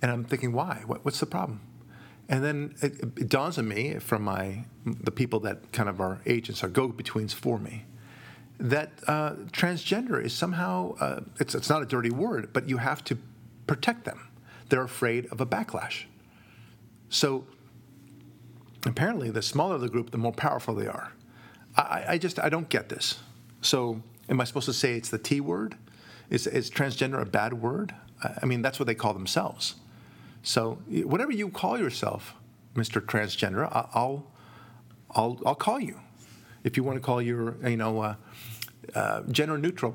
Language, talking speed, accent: English, 175 wpm, American